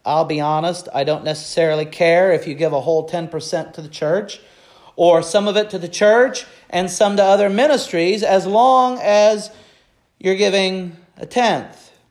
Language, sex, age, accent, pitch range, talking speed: English, male, 40-59, American, 180-230 Hz, 175 wpm